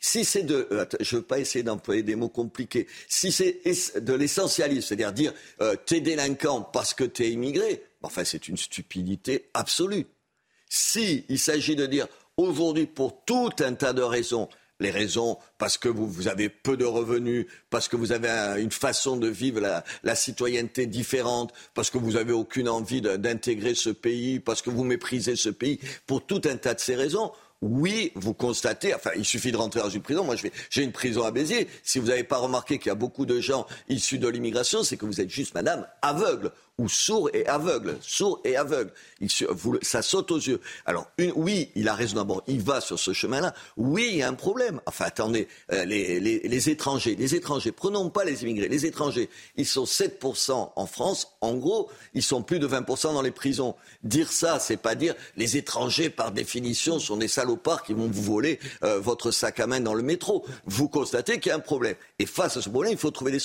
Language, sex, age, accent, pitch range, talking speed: French, male, 50-69, French, 115-160 Hz, 210 wpm